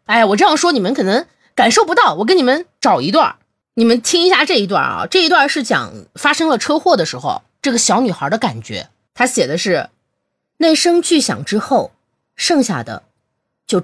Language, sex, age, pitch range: Chinese, female, 20-39, 200-335 Hz